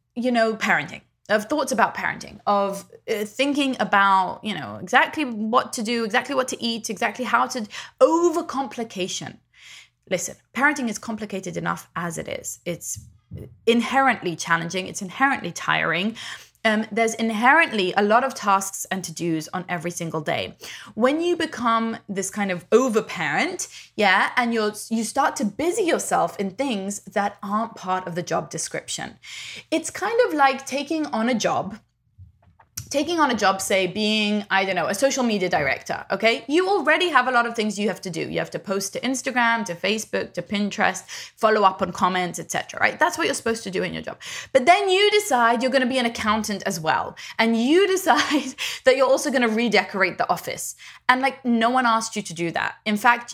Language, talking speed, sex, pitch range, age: English, 185 wpm, female, 195-260 Hz, 20-39